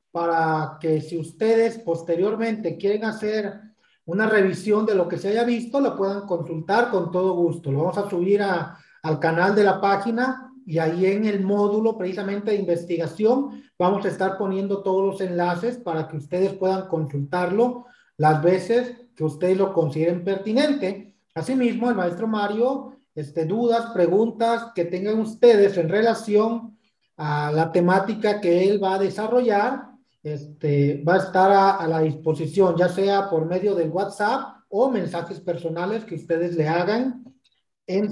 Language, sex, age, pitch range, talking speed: Spanish, male, 40-59, 170-215 Hz, 155 wpm